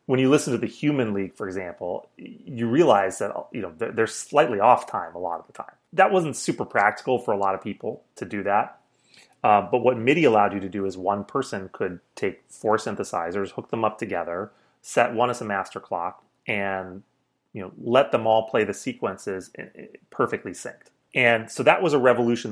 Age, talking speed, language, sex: 30-49, 205 wpm, English, male